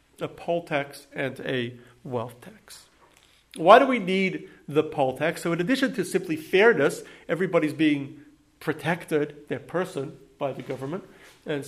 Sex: male